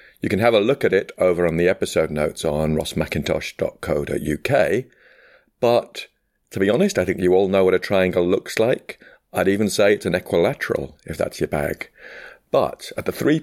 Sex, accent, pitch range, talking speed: male, British, 80-105 Hz, 190 wpm